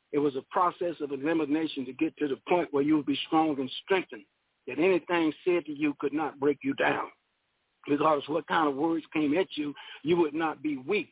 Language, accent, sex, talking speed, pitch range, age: English, American, male, 225 wpm, 150-190 Hz, 60-79